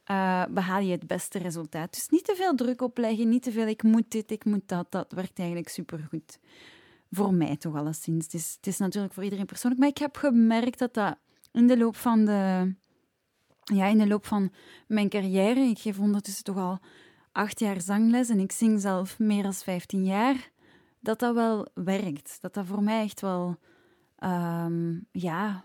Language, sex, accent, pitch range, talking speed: Dutch, female, Dutch, 185-235 Hz, 180 wpm